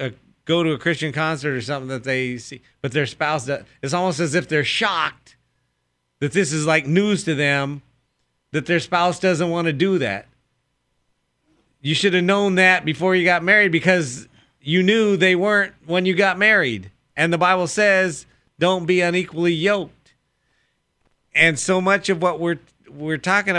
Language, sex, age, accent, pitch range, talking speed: English, male, 40-59, American, 125-175 Hz, 175 wpm